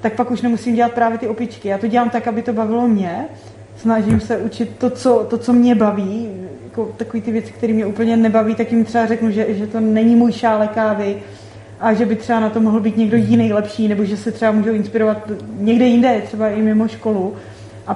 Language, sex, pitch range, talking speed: Czech, female, 220-235 Hz, 225 wpm